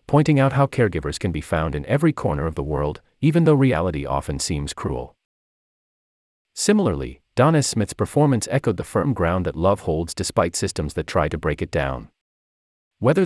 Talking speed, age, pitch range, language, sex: 175 wpm, 40-59, 75-120 Hz, English, male